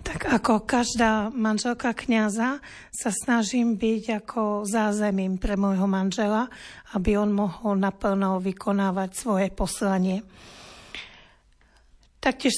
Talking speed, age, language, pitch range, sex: 100 wpm, 40-59, Slovak, 200-220 Hz, female